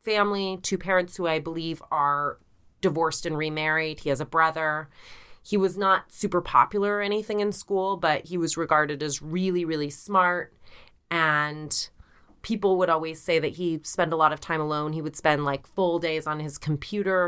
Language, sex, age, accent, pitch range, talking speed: English, female, 30-49, American, 150-185 Hz, 185 wpm